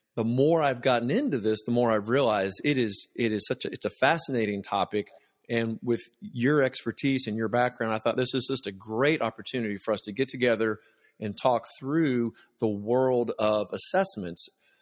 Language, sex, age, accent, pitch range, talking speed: English, male, 30-49, American, 110-130 Hz, 200 wpm